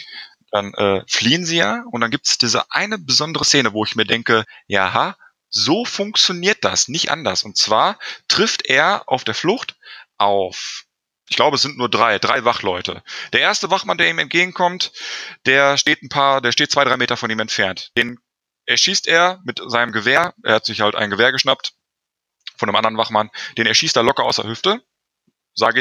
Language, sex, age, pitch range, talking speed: German, male, 30-49, 115-190 Hz, 195 wpm